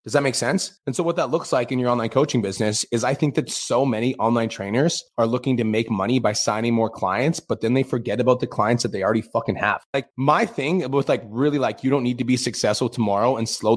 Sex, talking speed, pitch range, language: male, 260 wpm, 115-145 Hz, English